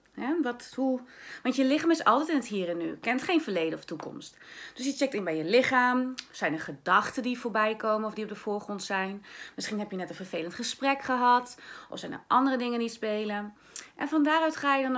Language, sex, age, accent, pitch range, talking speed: Dutch, female, 30-49, Dutch, 195-260 Hz, 235 wpm